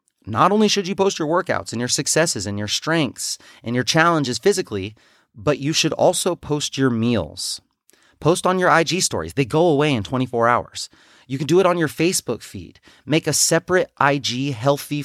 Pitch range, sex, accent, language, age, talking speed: 115-160 Hz, male, American, English, 30-49, 190 wpm